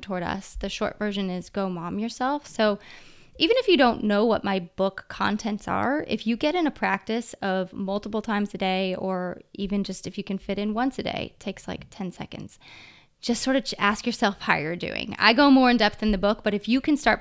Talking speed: 235 wpm